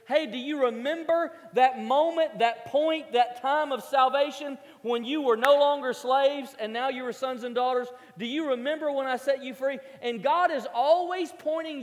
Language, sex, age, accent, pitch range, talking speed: English, male, 40-59, American, 225-295 Hz, 195 wpm